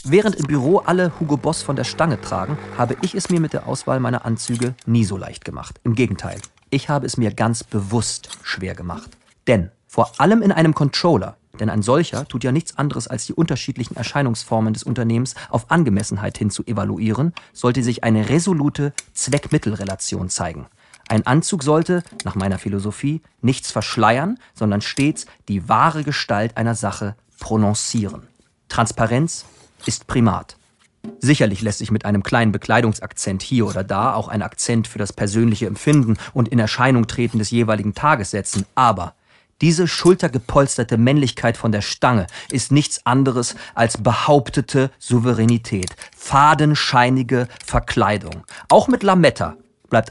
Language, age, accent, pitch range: German, 40-59, German, 110-145 Hz